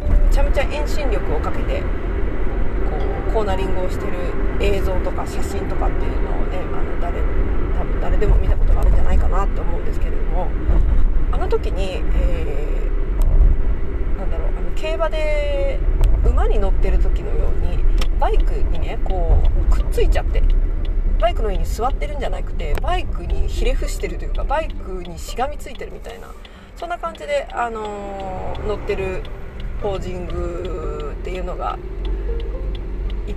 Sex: female